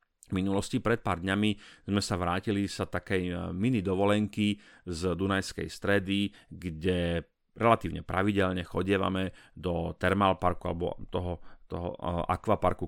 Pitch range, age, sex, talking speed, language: 90-100 Hz, 30-49, male, 120 wpm, Slovak